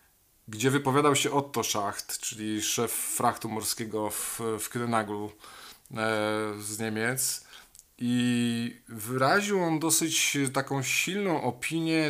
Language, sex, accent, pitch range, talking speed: Polish, male, native, 110-125 Hz, 105 wpm